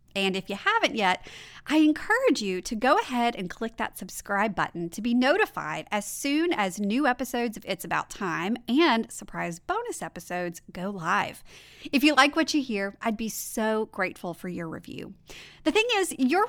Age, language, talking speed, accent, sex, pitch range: 30-49, English, 185 wpm, American, female, 195-275 Hz